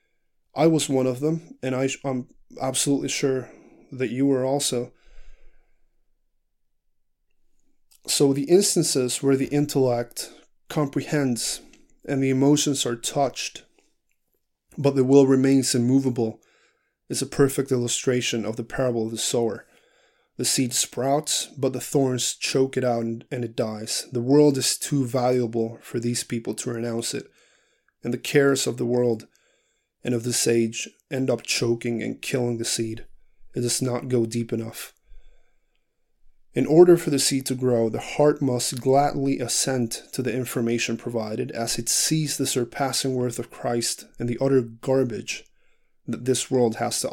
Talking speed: 155 wpm